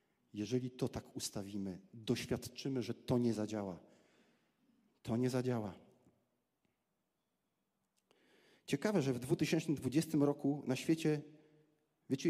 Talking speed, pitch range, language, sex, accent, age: 100 wpm, 115-145 Hz, Polish, male, native, 40-59